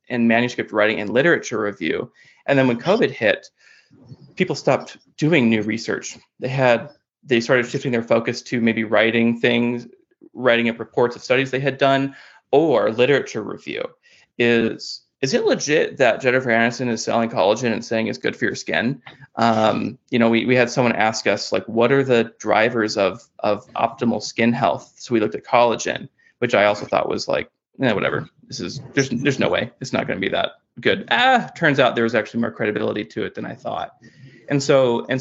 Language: English